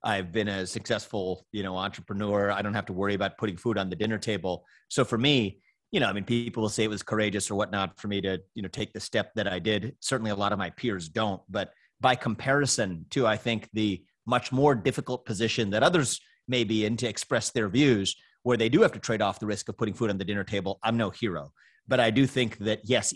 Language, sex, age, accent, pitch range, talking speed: English, male, 30-49, American, 95-115 Hz, 250 wpm